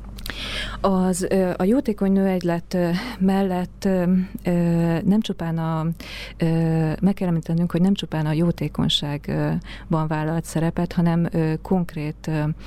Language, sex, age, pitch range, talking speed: Hungarian, female, 30-49, 155-180 Hz, 85 wpm